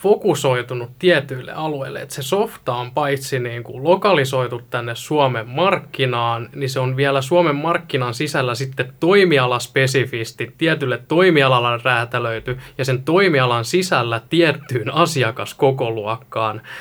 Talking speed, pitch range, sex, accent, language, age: 115 wpm, 120-140 Hz, male, native, Finnish, 20-39